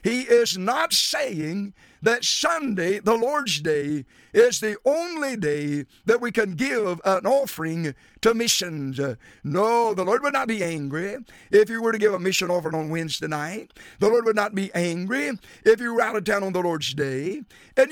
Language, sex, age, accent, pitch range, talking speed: English, male, 50-69, American, 165-235 Hz, 190 wpm